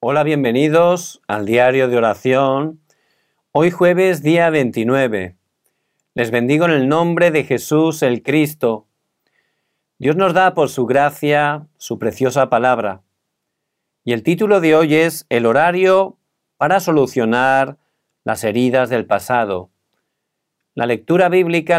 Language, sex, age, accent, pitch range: Korean, male, 50-69, Spanish, 120-160 Hz